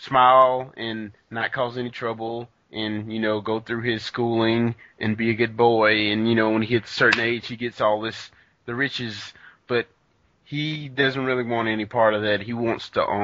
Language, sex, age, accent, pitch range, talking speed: English, male, 20-39, American, 110-130 Hz, 205 wpm